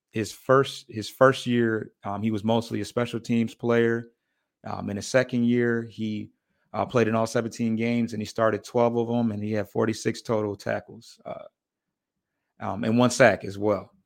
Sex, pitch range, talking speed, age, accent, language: male, 105-120 Hz, 190 wpm, 30-49, American, English